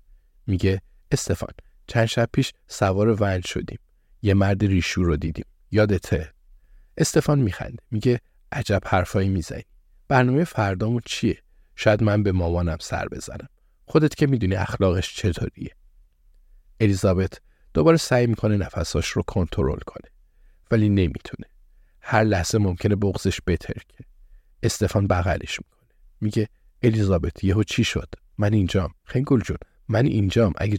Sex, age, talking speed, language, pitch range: male, 50-69, 125 wpm, Persian, 90-110 Hz